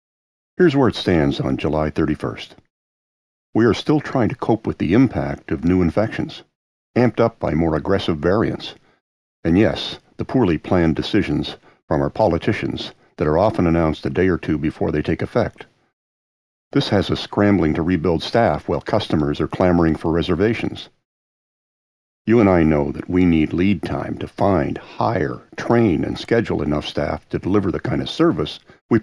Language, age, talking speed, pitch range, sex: English, 50-69, 170 wpm, 75-100 Hz, male